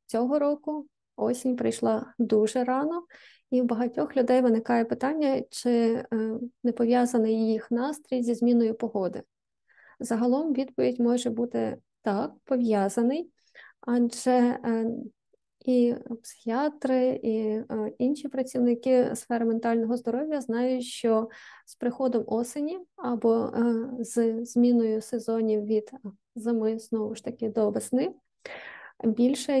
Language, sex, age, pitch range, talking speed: Ukrainian, female, 20-39, 230-260 Hz, 100 wpm